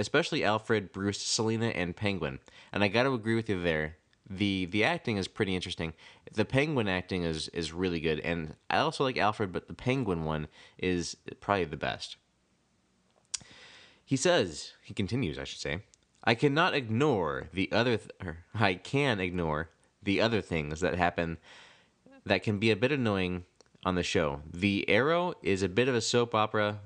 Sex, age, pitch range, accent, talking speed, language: male, 20-39, 90-120 Hz, American, 180 wpm, English